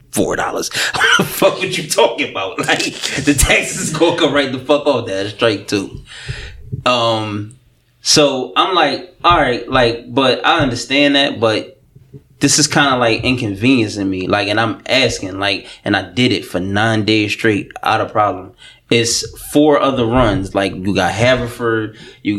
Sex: male